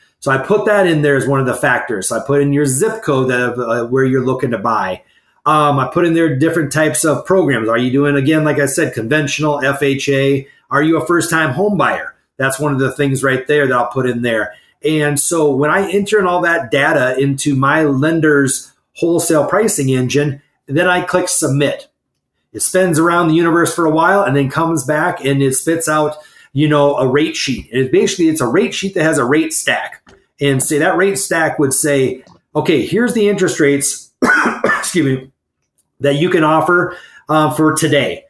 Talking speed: 210 wpm